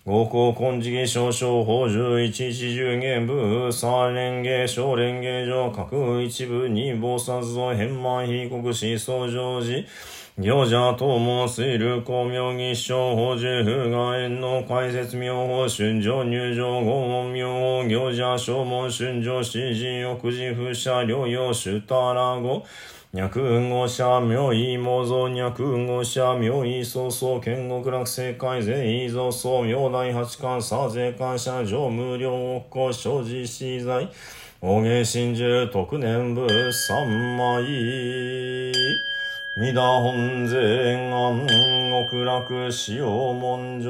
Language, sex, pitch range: Japanese, male, 120-125 Hz